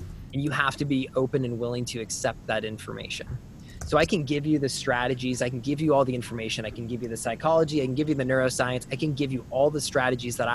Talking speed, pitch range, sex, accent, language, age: 260 wpm, 120-145 Hz, male, American, English, 20-39